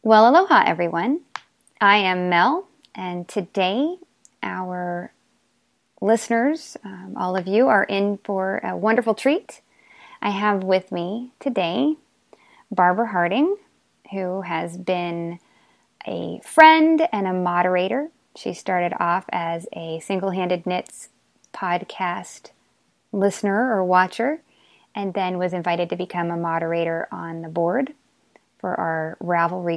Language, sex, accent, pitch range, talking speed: English, female, American, 175-225 Hz, 120 wpm